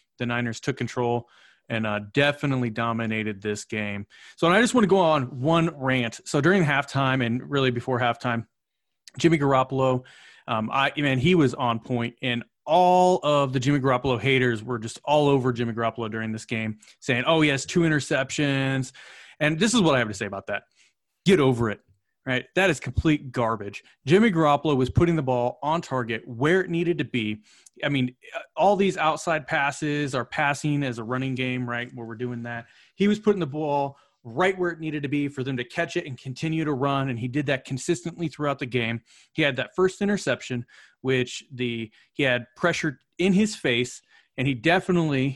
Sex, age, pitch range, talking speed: male, 30-49, 120-155 Hz, 195 wpm